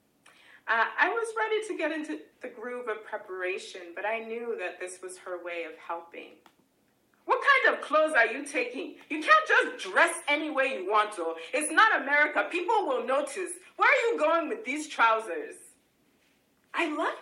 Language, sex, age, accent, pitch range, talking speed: French, female, 30-49, American, 215-365 Hz, 180 wpm